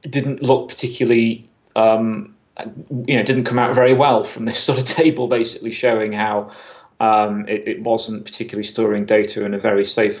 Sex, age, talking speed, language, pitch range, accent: male, 30-49, 175 wpm, English, 110-125 Hz, British